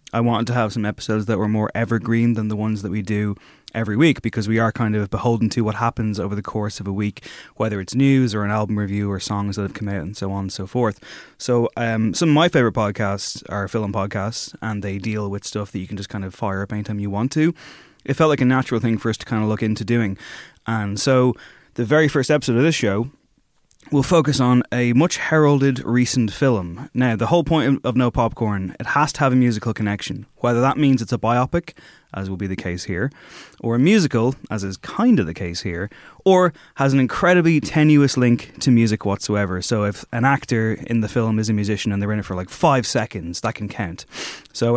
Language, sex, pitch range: English, male, 105-130 Hz